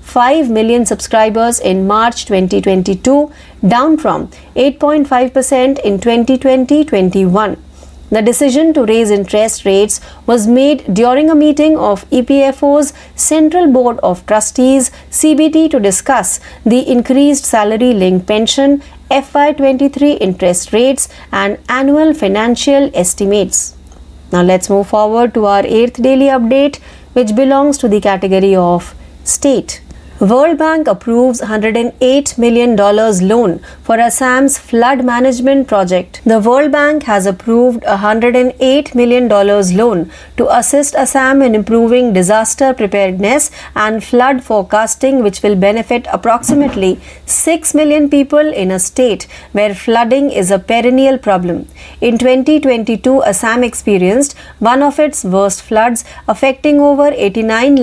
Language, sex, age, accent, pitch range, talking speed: Marathi, female, 50-69, native, 210-275 Hz, 125 wpm